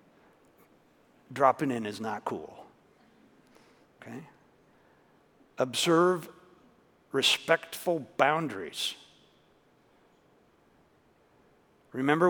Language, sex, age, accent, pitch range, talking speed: English, male, 50-69, American, 130-160 Hz, 50 wpm